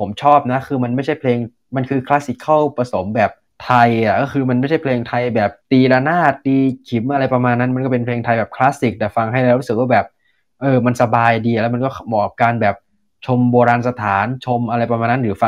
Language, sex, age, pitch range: Thai, male, 20-39, 110-130 Hz